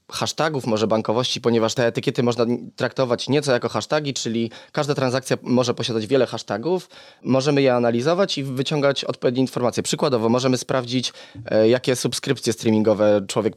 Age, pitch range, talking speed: 20-39, 115-135 Hz, 140 wpm